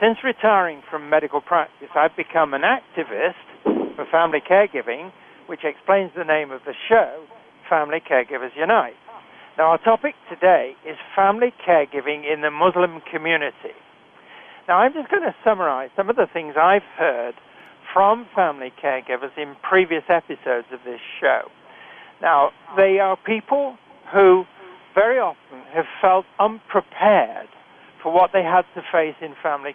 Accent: British